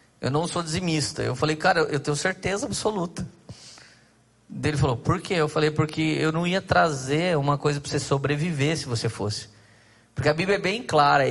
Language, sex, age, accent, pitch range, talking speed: Portuguese, male, 20-39, Brazilian, 145-180 Hz, 190 wpm